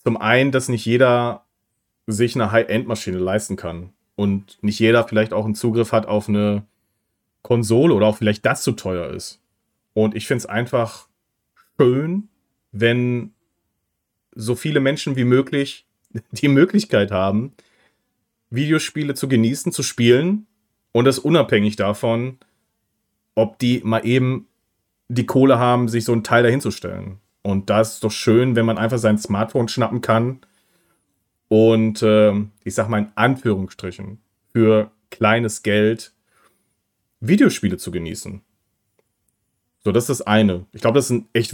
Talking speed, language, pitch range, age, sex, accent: 145 wpm, German, 105-125 Hz, 30-49, male, German